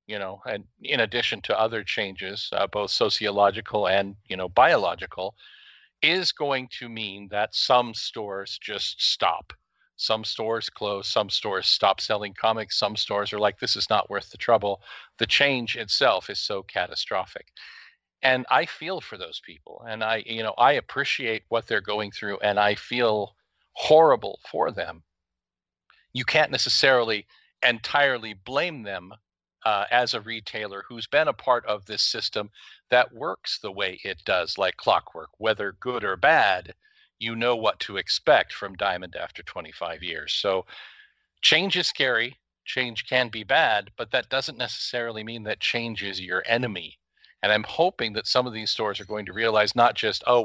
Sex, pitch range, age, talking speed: male, 100-120 Hz, 50-69, 170 wpm